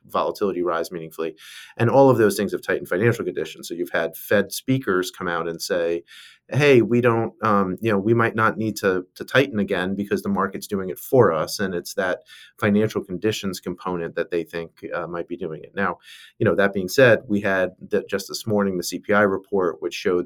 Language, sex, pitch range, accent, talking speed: English, male, 95-130 Hz, American, 215 wpm